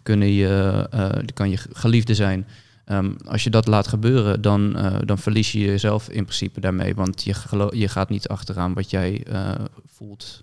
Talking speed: 185 wpm